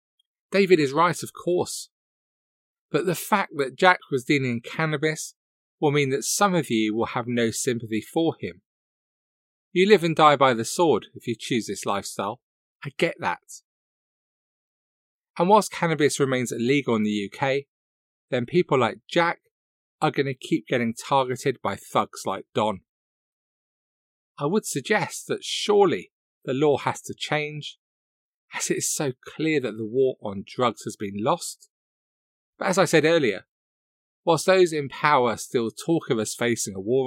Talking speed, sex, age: 165 wpm, male, 40-59